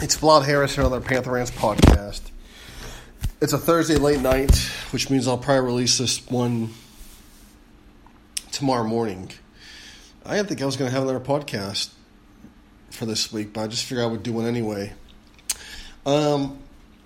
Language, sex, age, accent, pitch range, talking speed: English, male, 30-49, American, 110-140 Hz, 160 wpm